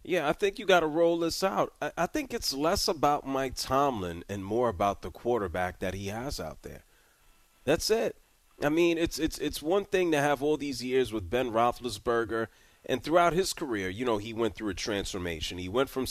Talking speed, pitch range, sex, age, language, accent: 215 wpm, 115-170 Hz, male, 30-49, English, American